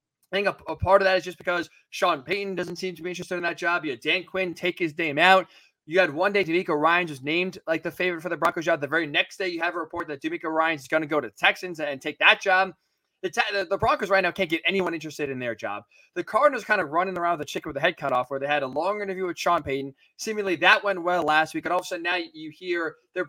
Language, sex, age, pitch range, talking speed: English, male, 20-39, 155-195 Hz, 300 wpm